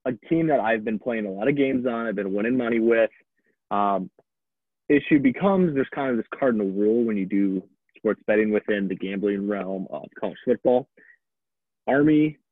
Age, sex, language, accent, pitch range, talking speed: 20-39, male, English, American, 105-125 Hz, 180 wpm